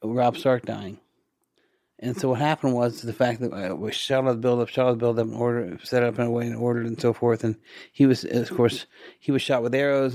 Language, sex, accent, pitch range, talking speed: English, male, American, 115-130 Hz, 260 wpm